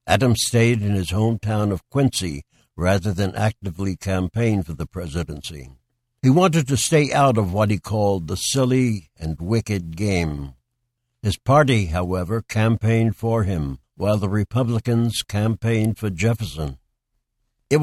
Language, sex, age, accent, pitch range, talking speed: English, male, 60-79, American, 95-120 Hz, 140 wpm